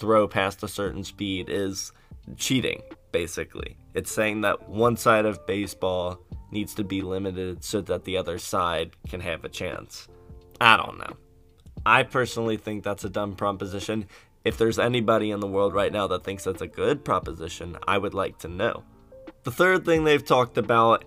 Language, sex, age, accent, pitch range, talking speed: English, male, 20-39, American, 100-120 Hz, 180 wpm